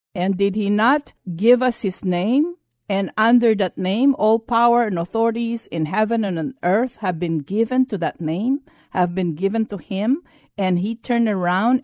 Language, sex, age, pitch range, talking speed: English, female, 50-69, 175-245 Hz, 180 wpm